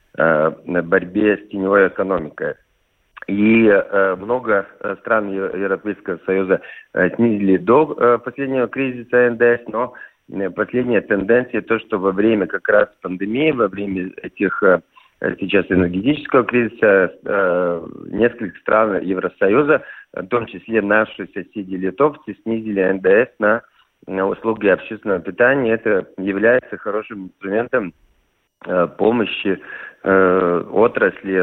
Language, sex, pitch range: Russian, male, 90-110 Hz